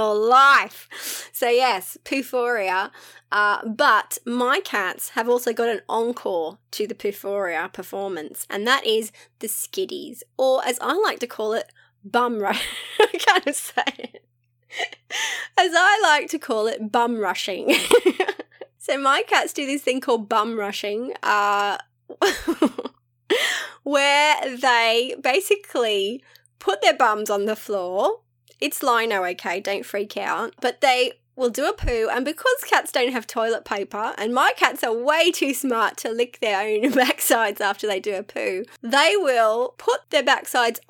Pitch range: 225-360 Hz